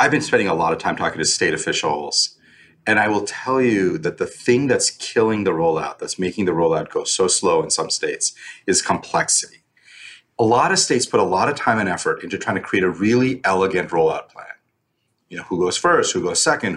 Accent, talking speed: American, 225 wpm